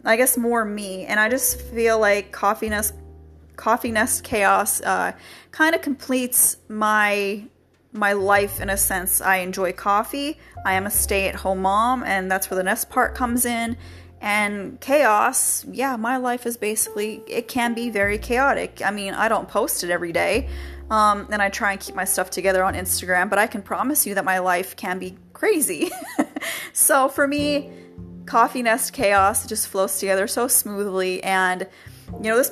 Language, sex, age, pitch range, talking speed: English, female, 30-49, 190-230 Hz, 180 wpm